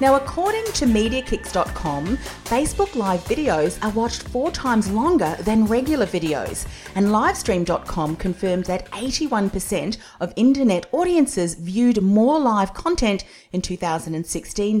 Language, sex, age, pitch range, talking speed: English, female, 40-59, 170-230 Hz, 120 wpm